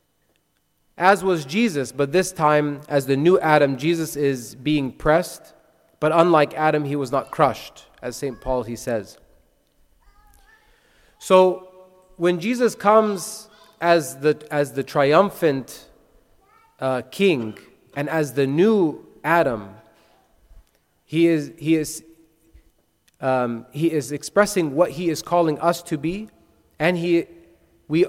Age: 30-49